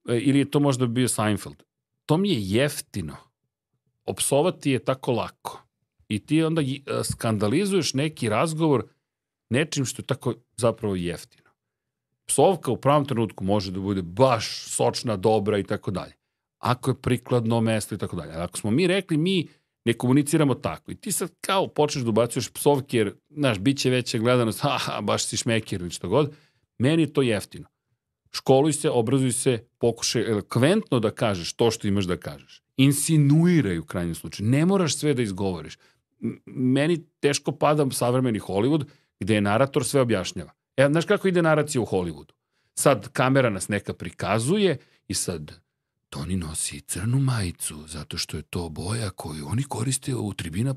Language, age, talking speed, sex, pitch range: Croatian, 40-59, 160 wpm, male, 105-145 Hz